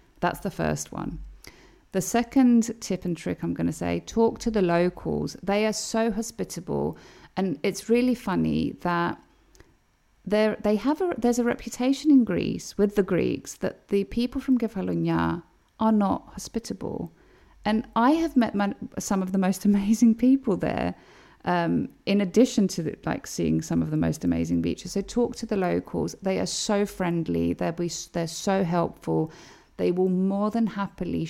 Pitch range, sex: 160-205 Hz, female